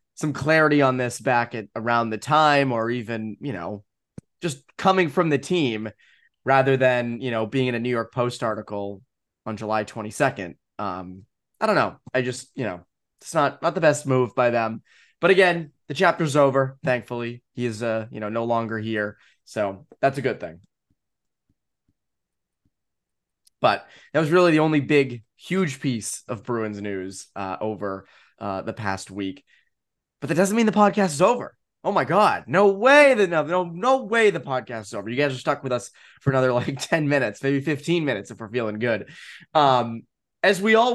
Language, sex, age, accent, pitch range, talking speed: English, male, 20-39, American, 115-155 Hz, 190 wpm